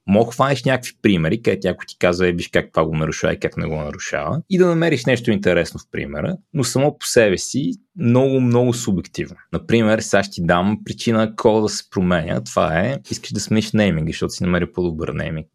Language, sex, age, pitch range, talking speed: Bulgarian, male, 20-39, 90-115 Hz, 215 wpm